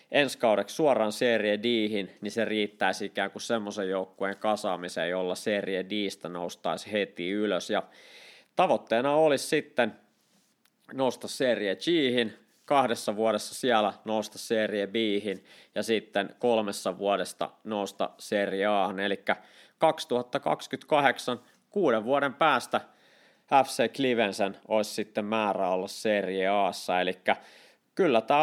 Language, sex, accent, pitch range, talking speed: Finnish, male, native, 100-115 Hz, 115 wpm